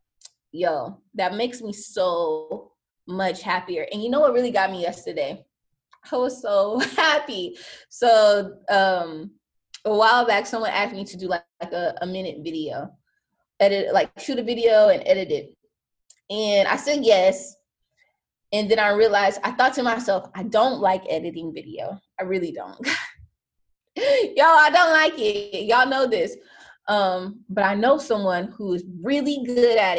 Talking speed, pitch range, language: 160 wpm, 195-285 Hz, English